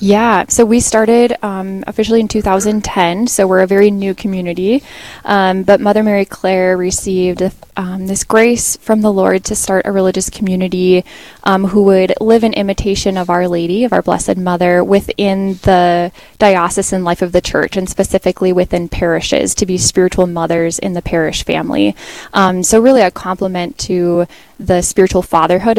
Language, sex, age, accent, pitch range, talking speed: English, female, 10-29, American, 175-200 Hz, 170 wpm